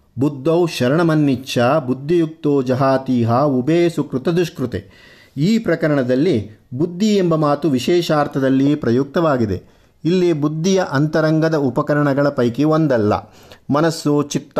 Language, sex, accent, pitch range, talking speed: Kannada, male, native, 125-165 Hz, 90 wpm